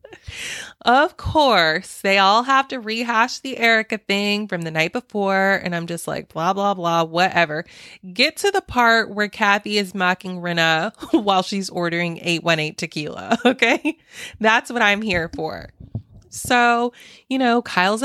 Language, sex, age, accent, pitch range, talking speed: English, female, 20-39, American, 170-230 Hz, 155 wpm